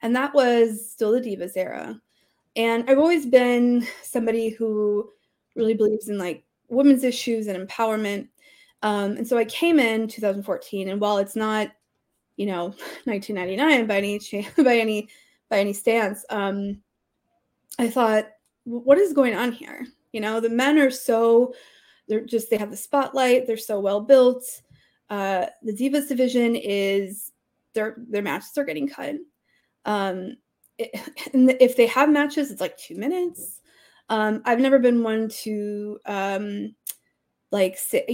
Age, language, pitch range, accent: 20-39, English, 205-260 Hz, American